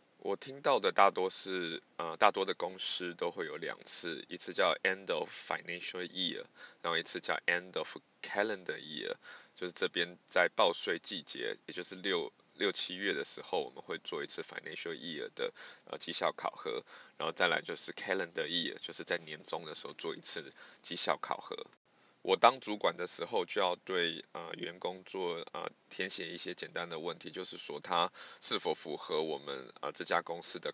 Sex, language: male, Chinese